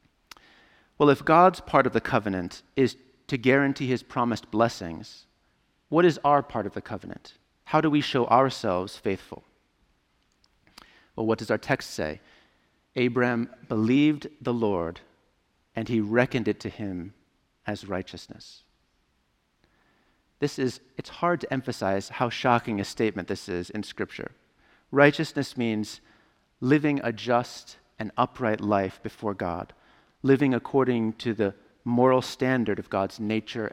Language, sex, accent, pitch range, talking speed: English, male, American, 100-135 Hz, 135 wpm